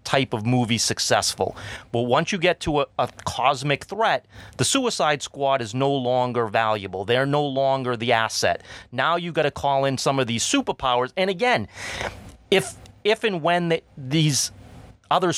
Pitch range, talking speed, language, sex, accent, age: 110-150 Hz, 170 wpm, English, male, American, 30-49